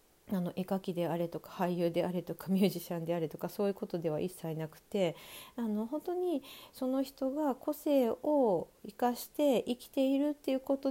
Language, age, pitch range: Japanese, 40-59, 180-260 Hz